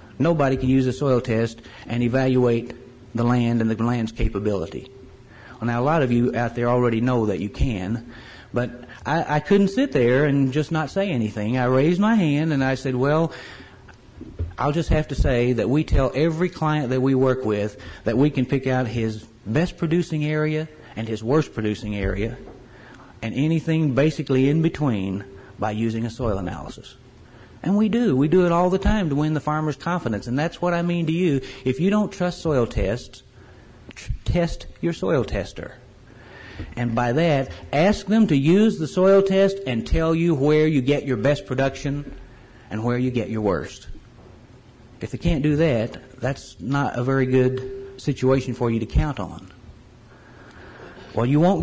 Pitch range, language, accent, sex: 115-150 Hz, English, American, male